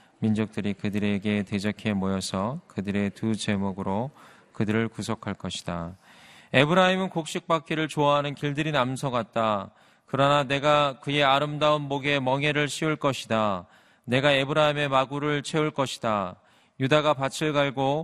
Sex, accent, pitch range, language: male, native, 100-140 Hz, Korean